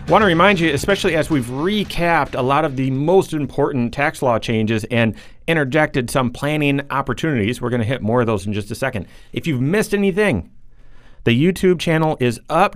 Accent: American